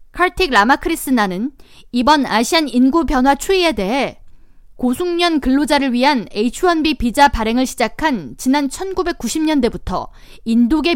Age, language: 20-39, Korean